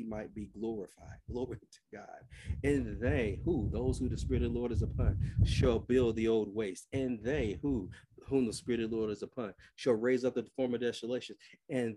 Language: English